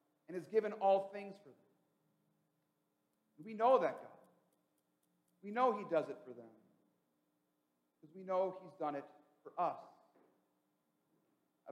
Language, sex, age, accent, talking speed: English, male, 40-59, American, 140 wpm